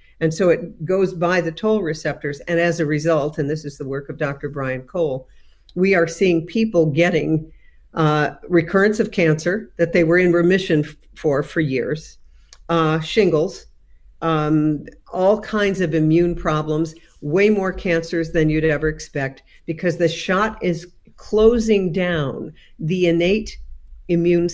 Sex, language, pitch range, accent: female, English, 145-175 Hz, American